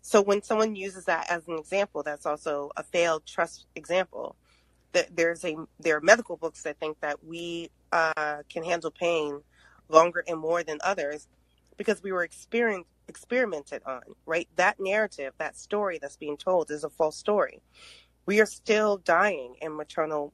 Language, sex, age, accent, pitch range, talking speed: English, female, 30-49, American, 150-195 Hz, 170 wpm